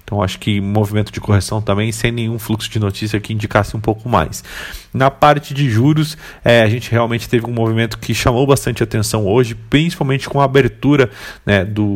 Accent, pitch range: Brazilian, 105-120 Hz